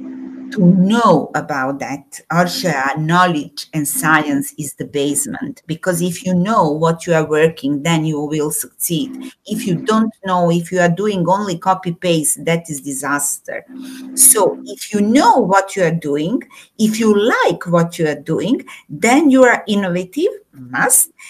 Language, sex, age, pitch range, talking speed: English, female, 50-69, 170-245 Hz, 160 wpm